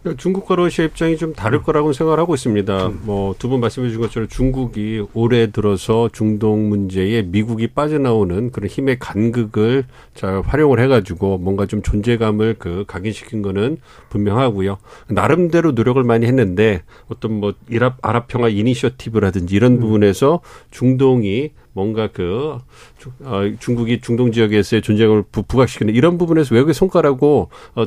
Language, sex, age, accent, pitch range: Korean, male, 40-59, native, 100-135 Hz